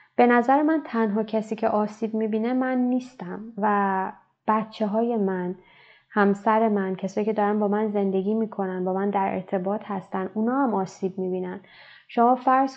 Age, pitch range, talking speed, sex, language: 20-39, 190-225 Hz, 160 wpm, female, Persian